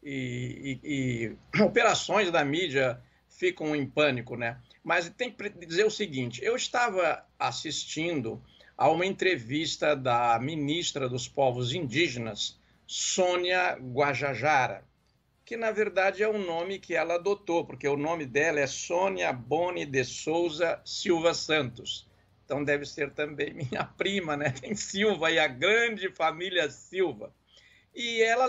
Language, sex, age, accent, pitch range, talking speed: Portuguese, male, 60-79, Brazilian, 130-190 Hz, 135 wpm